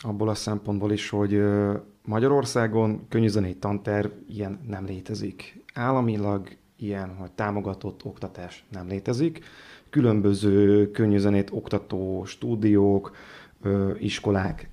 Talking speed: 95 wpm